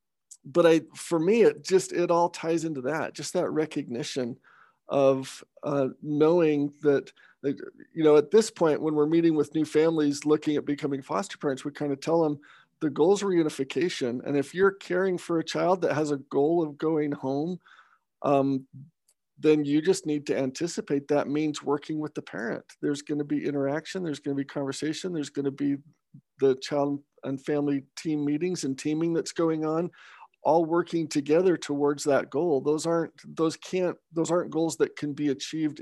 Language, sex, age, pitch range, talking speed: English, male, 50-69, 140-160 Hz, 190 wpm